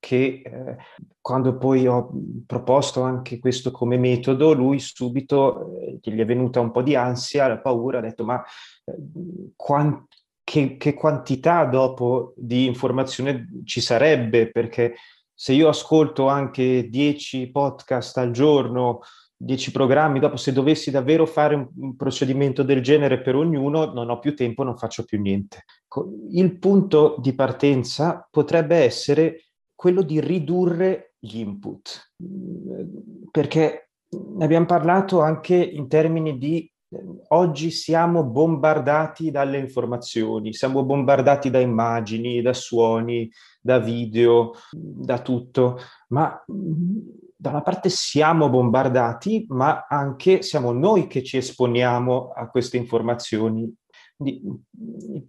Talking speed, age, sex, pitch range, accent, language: 125 wpm, 30-49, male, 125-155 Hz, native, Italian